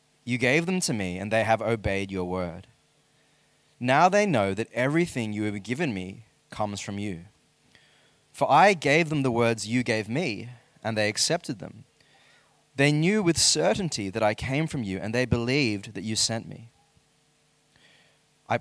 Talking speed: 170 wpm